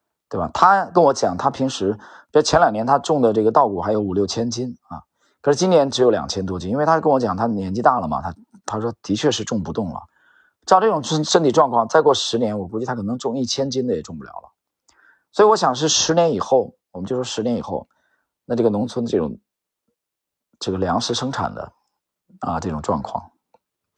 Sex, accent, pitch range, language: male, native, 100-145 Hz, Chinese